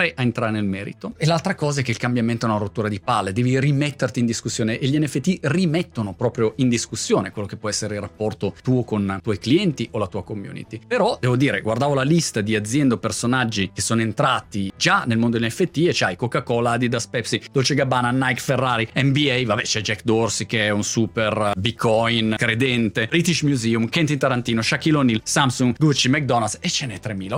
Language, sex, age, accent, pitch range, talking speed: Italian, male, 30-49, native, 115-150 Hz, 200 wpm